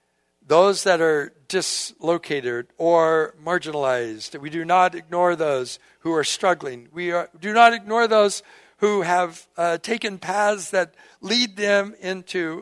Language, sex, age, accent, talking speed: English, male, 60-79, American, 135 wpm